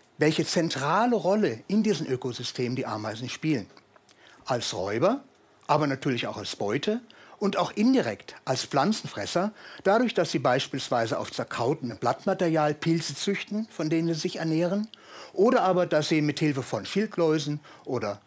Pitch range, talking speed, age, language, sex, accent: 135-195 Hz, 140 wpm, 60-79, German, male, German